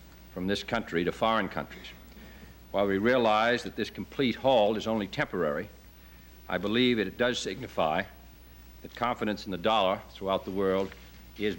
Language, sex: English, male